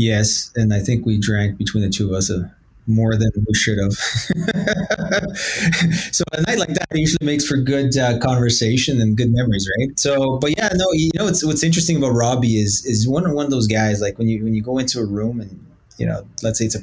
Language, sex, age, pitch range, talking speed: English, male, 20-39, 110-135 Hz, 235 wpm